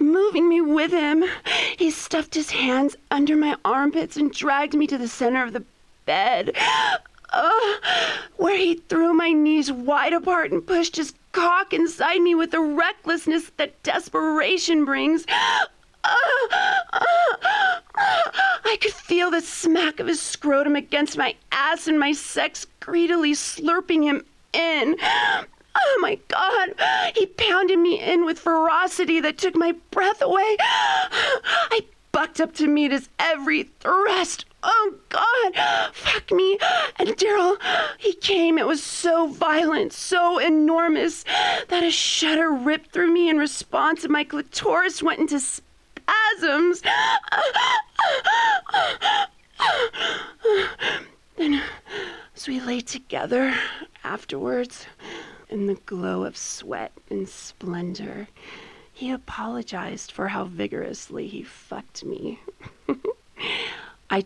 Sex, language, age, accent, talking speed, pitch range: female, English, 30-49, American, 125 wpm, 300-390 Hz